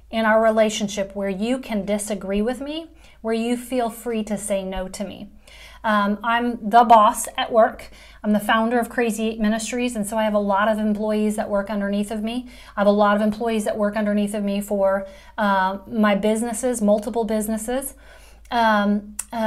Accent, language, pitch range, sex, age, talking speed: American, English, 210-250 Hz, female, 30-49, 195 wpm